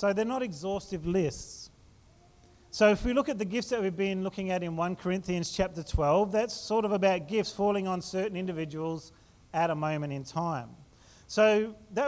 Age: 40-59